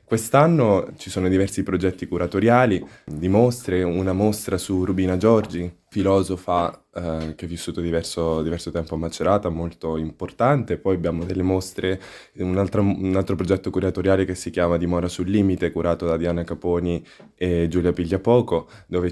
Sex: male